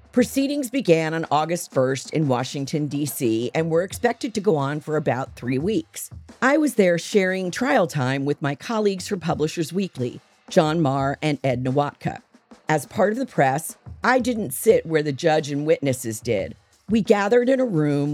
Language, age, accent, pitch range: English, 50-69, American, 140-205 Hz